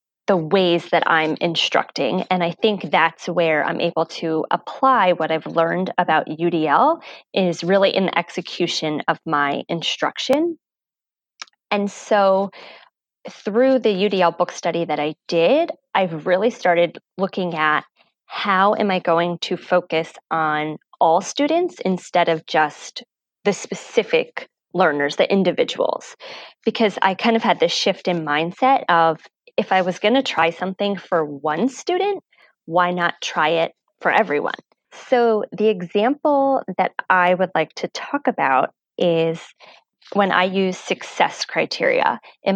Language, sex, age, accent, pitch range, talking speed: English, female, 20-39, American, 165-210 Hz, 145 wpm